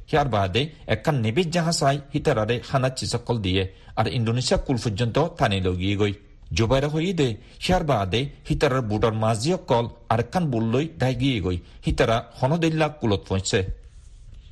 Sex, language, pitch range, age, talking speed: male, Bengali, 110-145 Hz, 50-69, 135 wpm